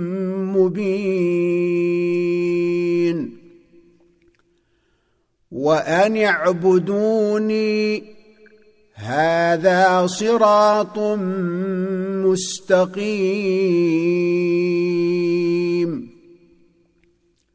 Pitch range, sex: 175-215 Hz, male